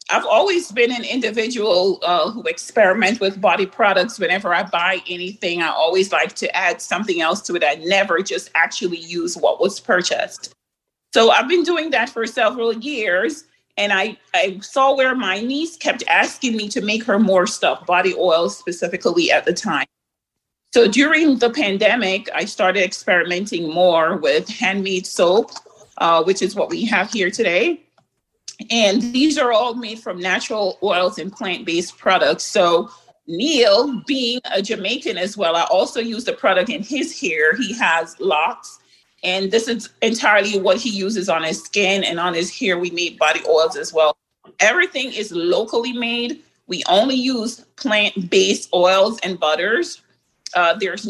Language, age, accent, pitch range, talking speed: English, 40-59, American, 180-240 Hz, 165 wpm